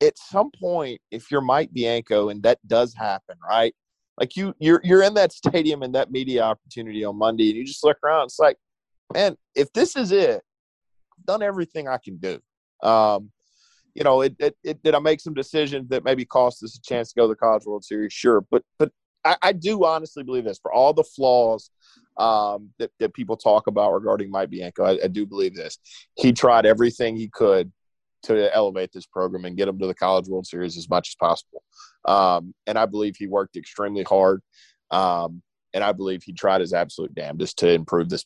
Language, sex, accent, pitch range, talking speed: English, male, American, 95-140 Hz, 210 wpm